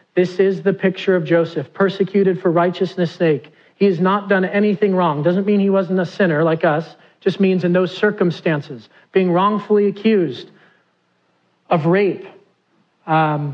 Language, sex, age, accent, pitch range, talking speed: English, male, 40-59, American, 145-195 Hz, 155 wpm